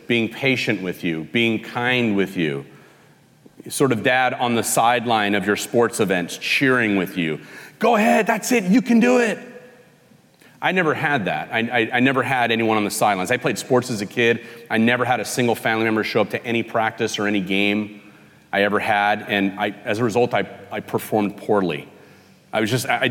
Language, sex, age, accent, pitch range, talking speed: English, male, 40-59, American, 105-160 Hz, 200 wpm